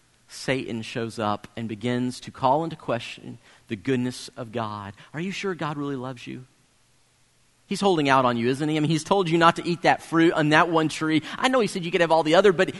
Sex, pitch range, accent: male, 140-195 Hz, American